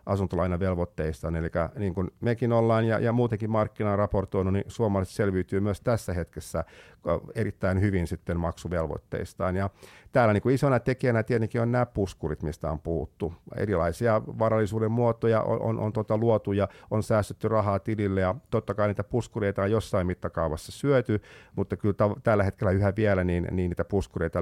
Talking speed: 165 wpm